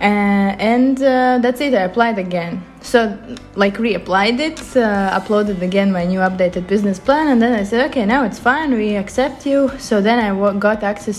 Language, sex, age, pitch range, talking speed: Italian, female, 20-39, 190-225 Hz, 200 wpm